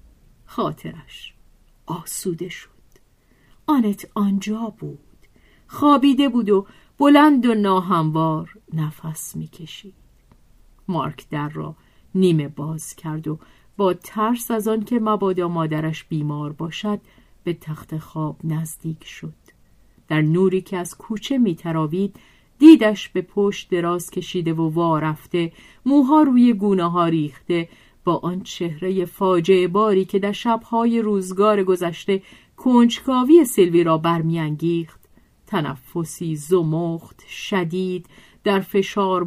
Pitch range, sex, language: 160-205 Hz, female, Persian